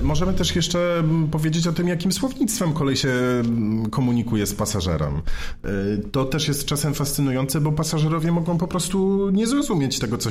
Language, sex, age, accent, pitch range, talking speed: Polish, male, 40-59, native, 105-130 Hz, 155 wpm